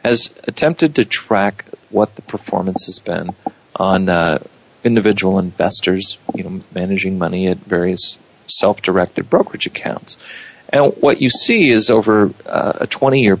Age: 40-59